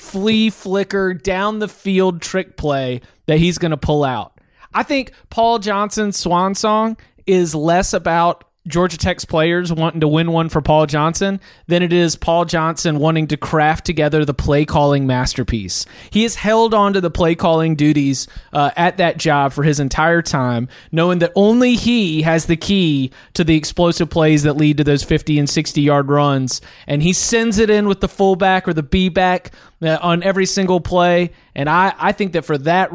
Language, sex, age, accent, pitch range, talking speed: English, male, 30-49, American, 150-185 Hz, 195 wpm